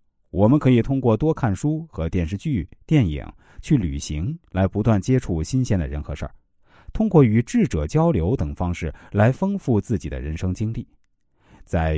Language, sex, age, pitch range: Chinese, male, 50-69, 80-125 Hz